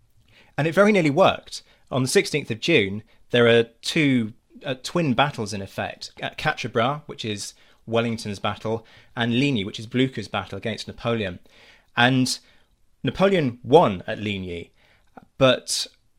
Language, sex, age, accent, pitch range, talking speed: English, male, 30-49, British, 110-130 Hz, 140 wpm